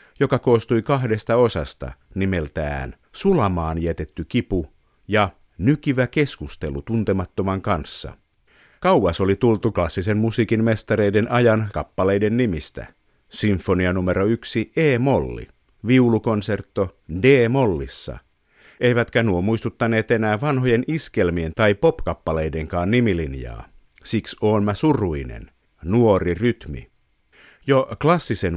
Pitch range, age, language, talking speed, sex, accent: 85-115 Hz, 50-69, Finnish, 95 wpm, male, native